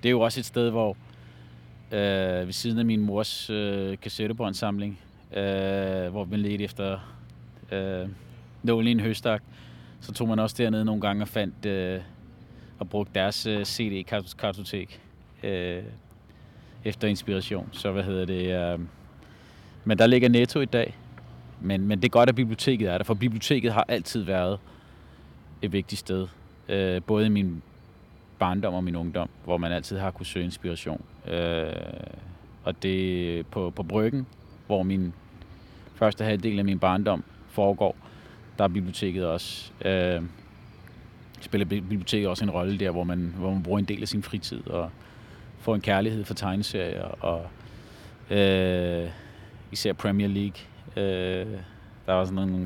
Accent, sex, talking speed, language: native, male, 155 wpm, Danish